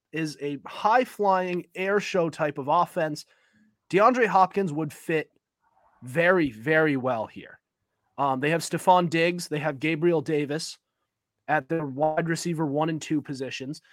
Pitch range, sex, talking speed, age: 145-200 Hz, male, 140 wpm, 30-49